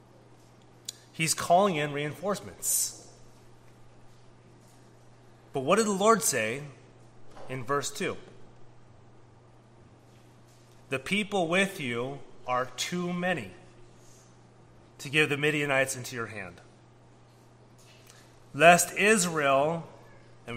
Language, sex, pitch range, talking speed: English, male, 115-170 Hz, 90 wpm